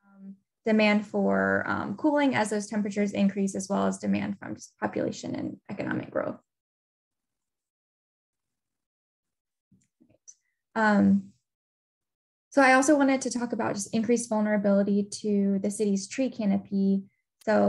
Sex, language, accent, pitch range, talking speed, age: female, English, American, 190-215 Hz, 120 wpm, 10-29